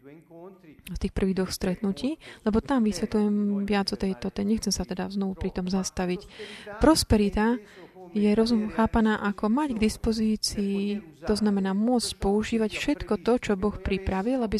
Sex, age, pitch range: female, 30-49, 185-225 Hz